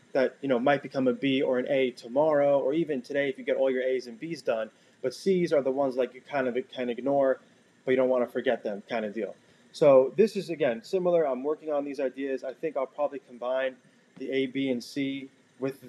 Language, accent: English, American